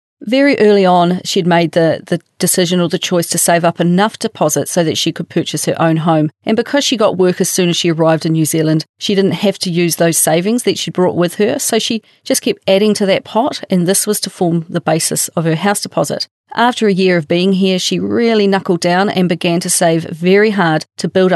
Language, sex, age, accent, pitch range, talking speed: English, female, 40-59, Australian, 170-205 Hz, 240 wpm